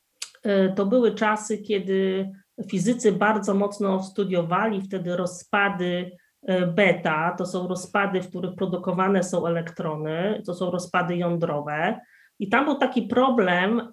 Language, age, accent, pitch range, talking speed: Polish, 30-49, native, 180-225 Hz, 120 wpm